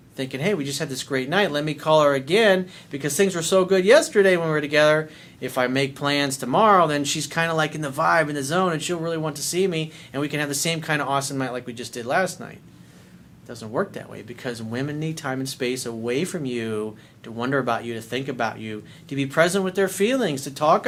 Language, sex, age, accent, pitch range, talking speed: English, male, 40-59, American, 115-160 Hz, 265 wpm